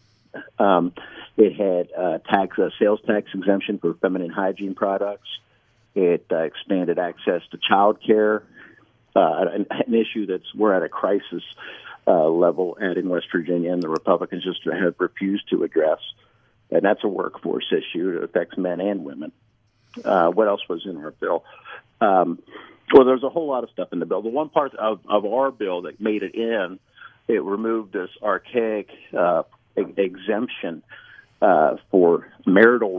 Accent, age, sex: American, 50-69, male